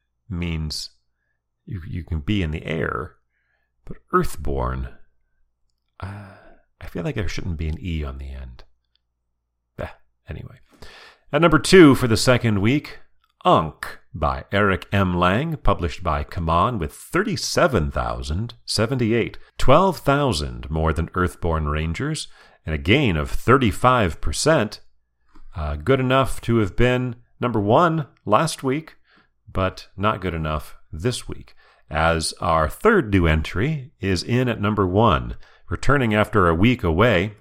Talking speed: 130 wpm